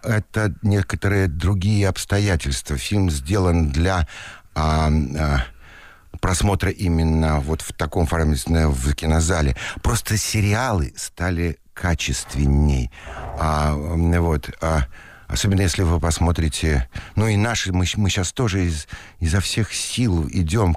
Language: Russian